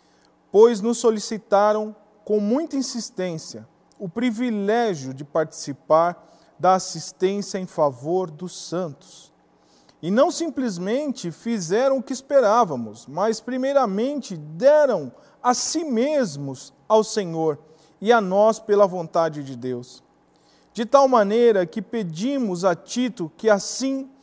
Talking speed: 115 wpm